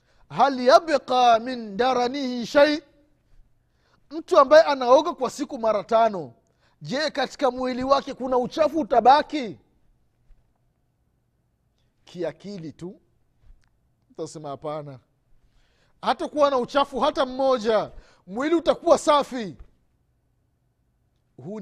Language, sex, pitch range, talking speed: Swahili, male, 165-255 Hz, 85 wpm